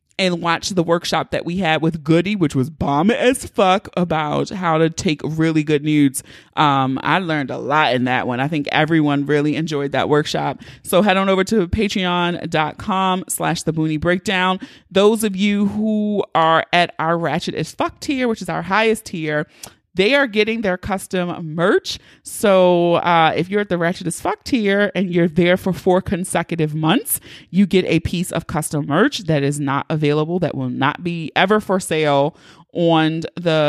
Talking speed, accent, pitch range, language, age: 185 wpm, American, 155-200 Hz, English, 30-49